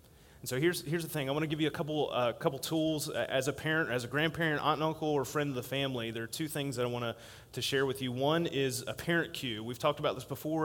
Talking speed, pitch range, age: 285 wpm, 120-155 Hz, 30-49